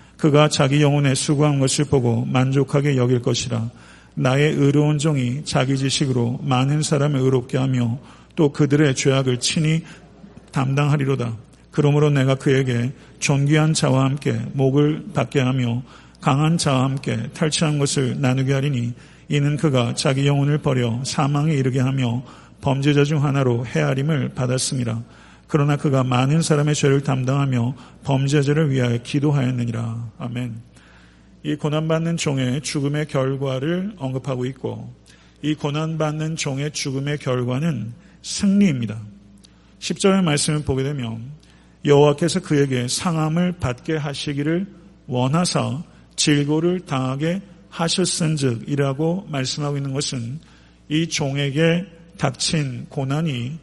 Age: 50-69